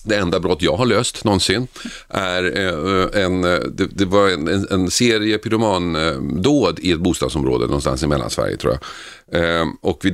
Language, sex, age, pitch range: Swedish, male, 40-59, 80-105 Hz